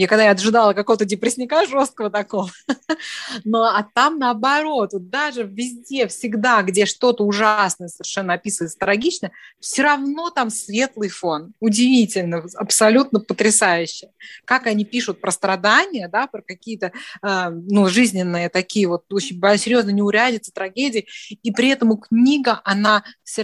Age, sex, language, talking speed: 20-39, female, Russian, 135 wpm